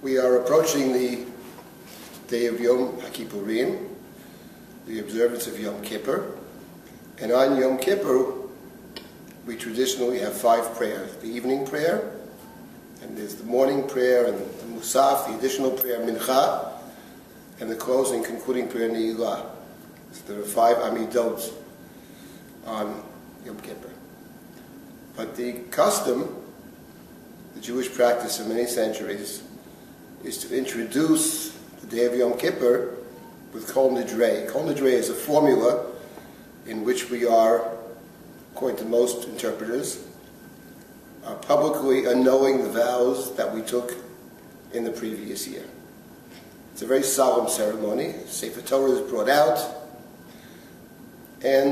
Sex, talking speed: male, 125 wpm